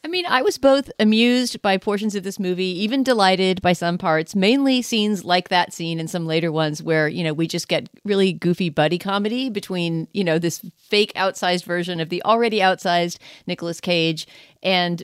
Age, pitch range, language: 40-59, 170-205 Hz, English